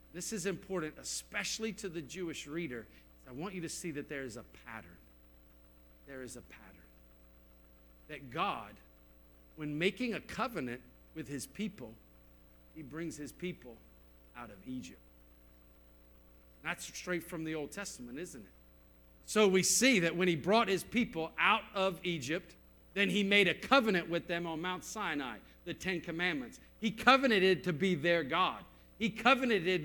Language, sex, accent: English, male, American